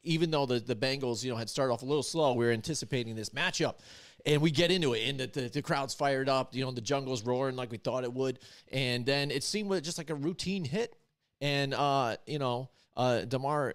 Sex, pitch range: male, 120-150 Hz